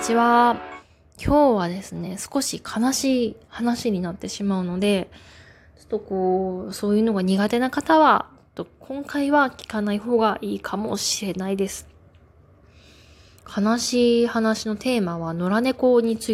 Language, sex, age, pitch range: Japanese, female, 20-39, 175-240 Hz